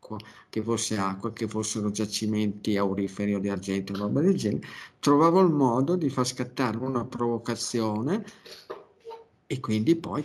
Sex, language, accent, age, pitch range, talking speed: male, Italian, native, 50-69, 105-135 Hz, 145 wpm